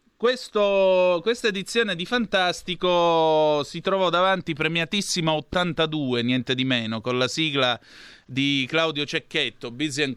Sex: male